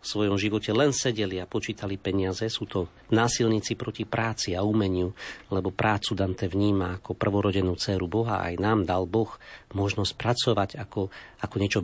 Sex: male